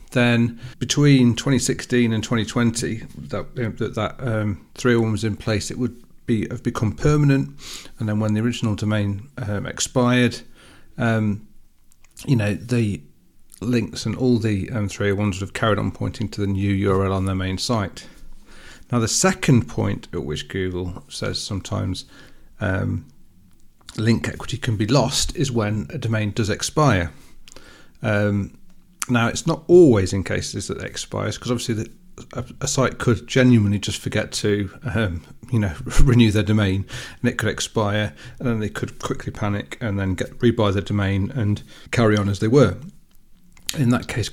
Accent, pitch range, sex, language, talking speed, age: British, 100-125 Hz, male, English, 170 wpm, 40-59